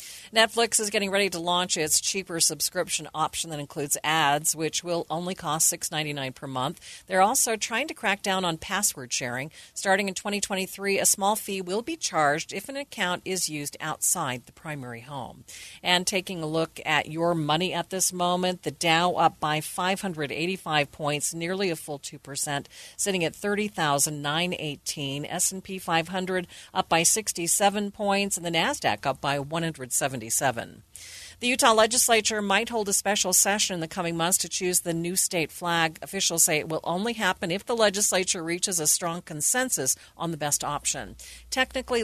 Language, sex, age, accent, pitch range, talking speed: English, female, 40-59, American, 155-200 Hz, 175 wpm